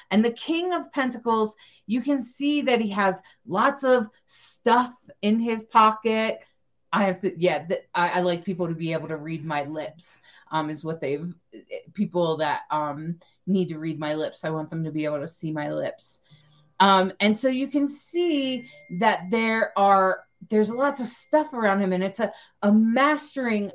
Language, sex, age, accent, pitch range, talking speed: English, female, 30-49, American, 165-225 Hz, 190 wpm